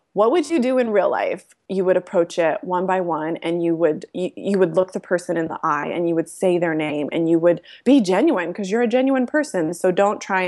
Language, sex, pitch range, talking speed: English, female, 170-220 Hz, 260 wpm